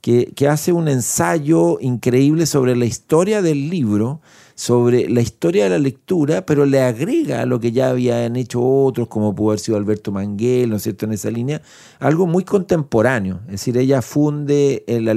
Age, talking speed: 50-69, 185 wpm